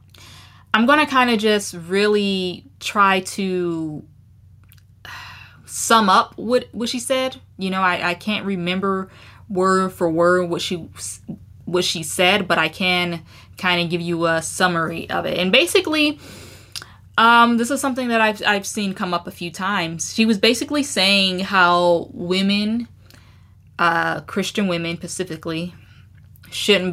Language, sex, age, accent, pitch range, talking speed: English, female, 10-29, American, 160-200 Hz, 145 wpm